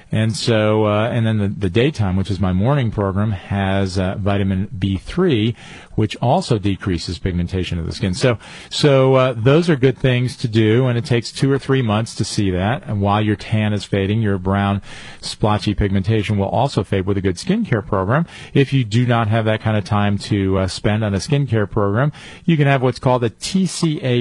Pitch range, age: 105-140 Hz, 40-59